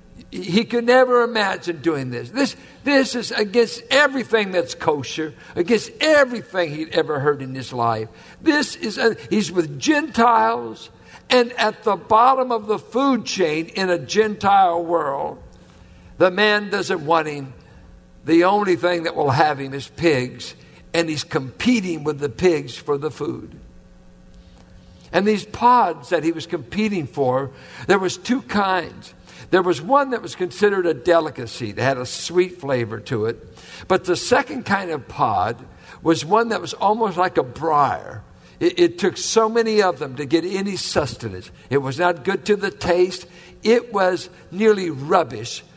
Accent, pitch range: American, 140-210 Hz